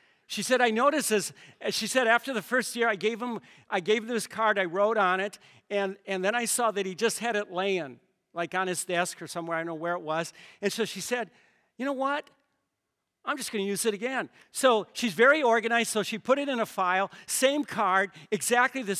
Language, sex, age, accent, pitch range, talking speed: English, male, 50-69, American, 195-250 Hz, 235 wpm